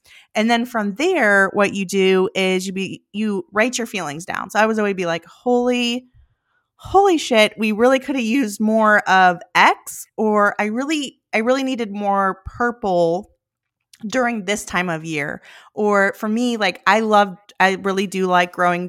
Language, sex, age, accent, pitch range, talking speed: English, female, 20-39, American, 180-220 Hz, 180 wpm